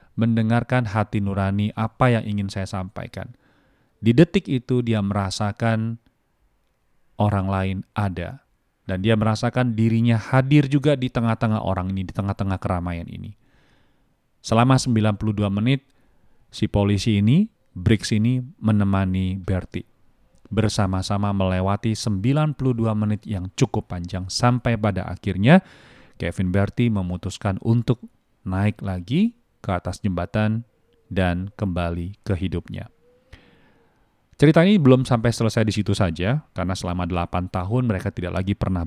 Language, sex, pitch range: Chinese, male, 95-120 Hz